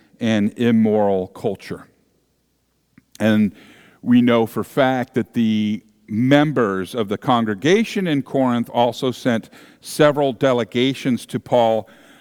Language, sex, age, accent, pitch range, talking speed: English, male, 50-69, American, 115-150 Hz, 115 wpm